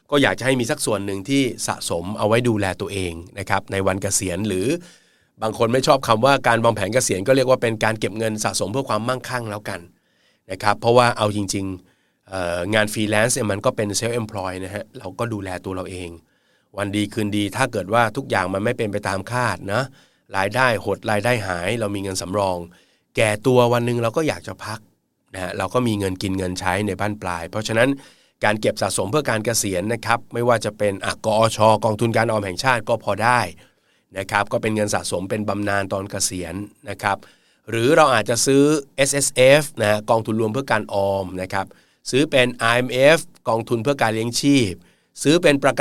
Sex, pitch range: male, 100-125 Hz